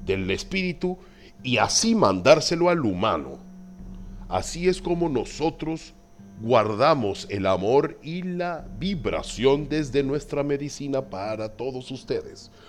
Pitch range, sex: 105-165 Hz, male